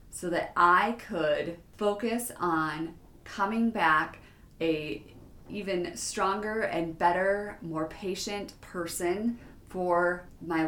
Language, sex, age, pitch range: English, female, 30-49, 165-205 Hz